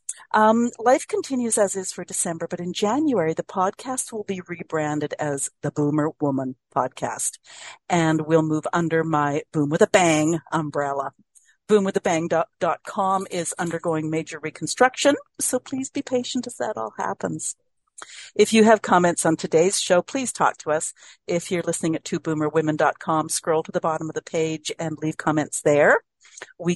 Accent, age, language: American, 50-69, English